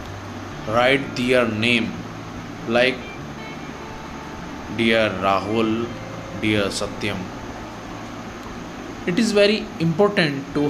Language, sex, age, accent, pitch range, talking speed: English, male, 20-39, Indian, 110-140 Hz, 75 wpm